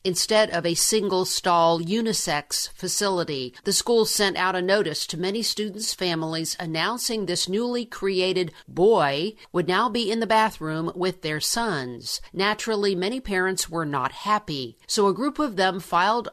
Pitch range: 170-210 Hz